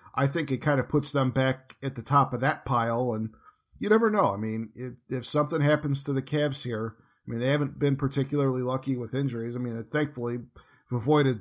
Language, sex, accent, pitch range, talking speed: English, male, American, 120-145 Hz, 220 wpm